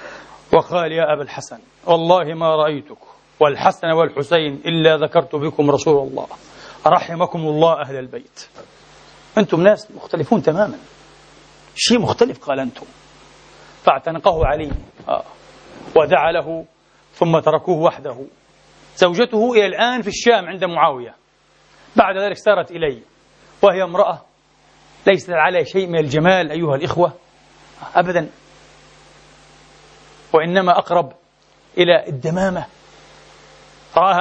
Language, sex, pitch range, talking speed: English, male, 165-205 Hz, 105 wpm